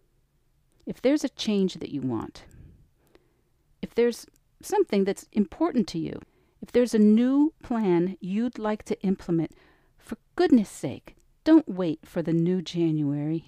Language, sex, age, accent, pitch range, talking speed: English, female, 50-69, American, 160-225 Hz, 140 wpm